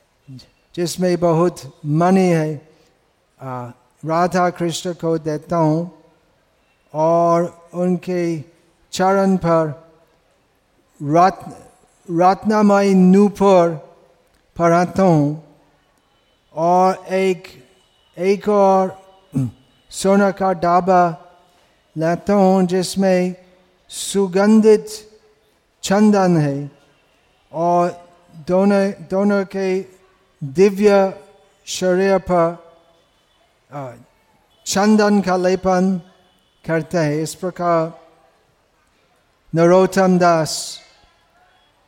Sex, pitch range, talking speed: male, 160-190 Hz, 65 wpm